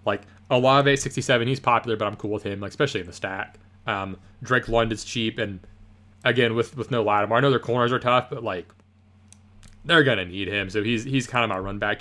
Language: English